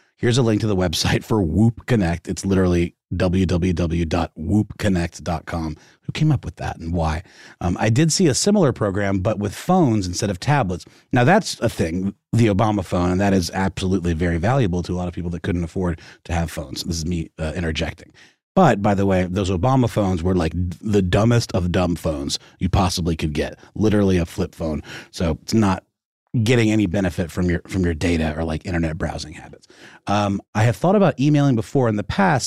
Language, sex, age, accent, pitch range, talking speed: English, male, 30-49, American, 90-115 Hz, 200 wpm